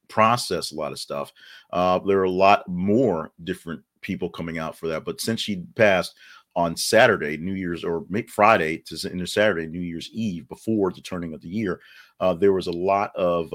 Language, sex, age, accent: English, male, 40-59, American